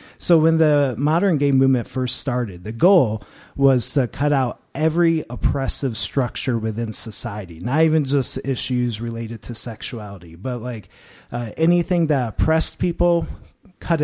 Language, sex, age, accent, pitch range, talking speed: English, male, 30-49, American, 110-140 Hz, 145 wpm